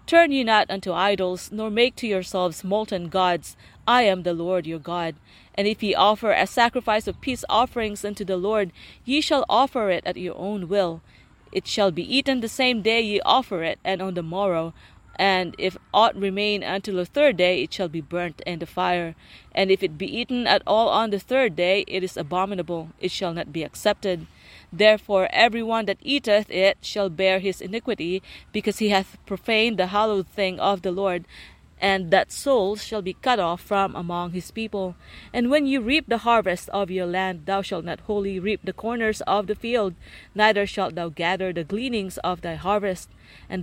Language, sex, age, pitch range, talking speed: English, female, 30-49, 185-215 Hz, 200 wpm